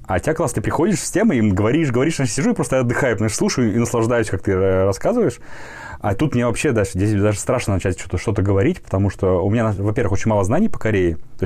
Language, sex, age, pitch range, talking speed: Russian, male, 20-39, 95-115 Hz, 230 wpm